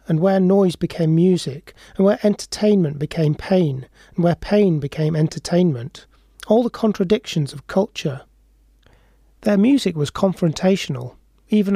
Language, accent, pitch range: English, British, 150-200 Hz